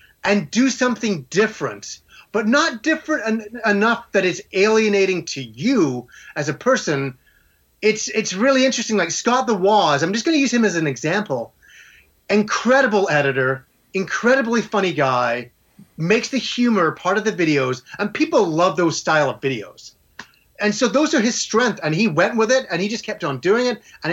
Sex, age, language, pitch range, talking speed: male, 30-49, English, 160-220 Hz, 175 wpm